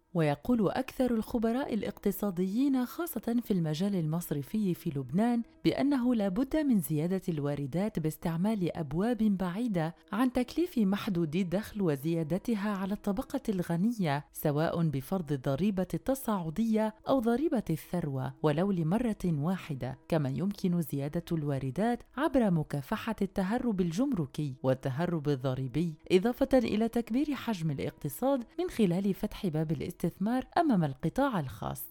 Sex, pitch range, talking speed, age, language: female, 155-230 Hz, 115 wpm, 30-49, Arabic